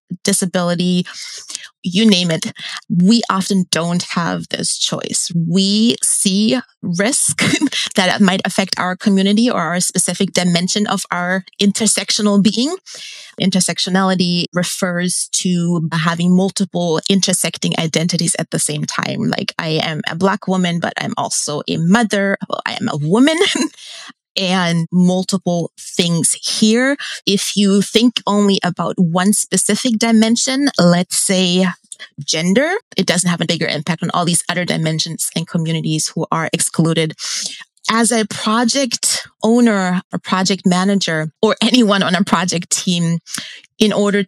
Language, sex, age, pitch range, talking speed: English, female, 30-49, 175-215 Hz, 135 wpm